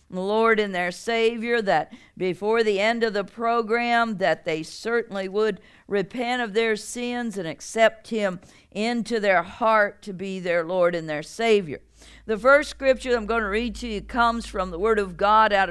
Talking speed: 185 wpm